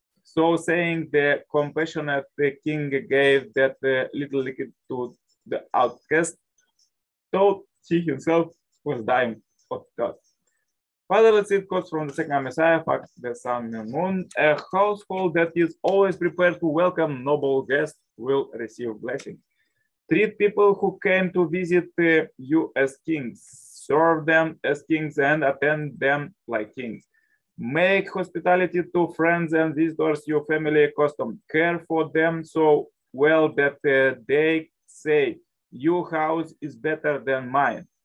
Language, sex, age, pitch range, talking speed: English, male, 20-39, 140-175 Hz, 140 wpm